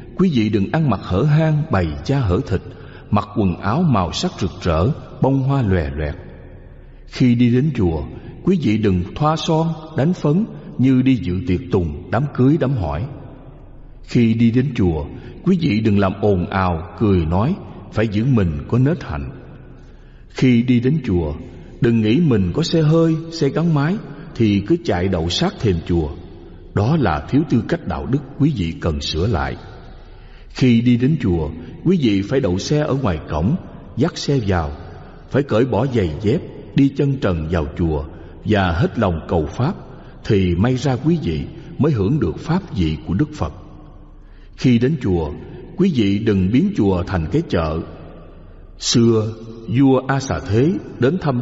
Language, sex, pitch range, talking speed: Vietnamese, male, 90-135 Hz, 180 wpm